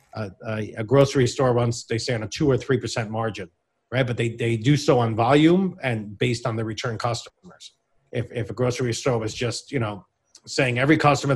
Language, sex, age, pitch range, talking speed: English, male, 40-59, 110-130 Hz, 210 wpm